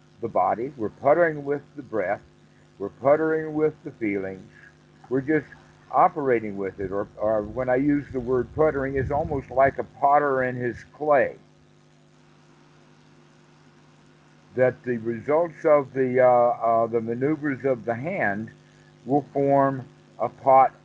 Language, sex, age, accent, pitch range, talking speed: English, male, 60-79, American, 120-150 Hz, 140 wpm